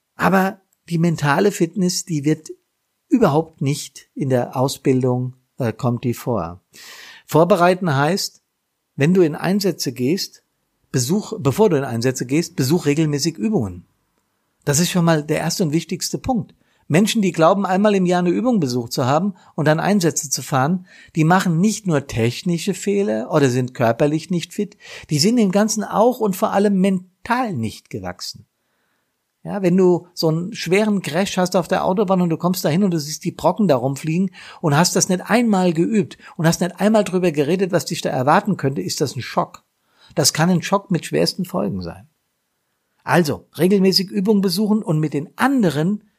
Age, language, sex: 50-69, German, male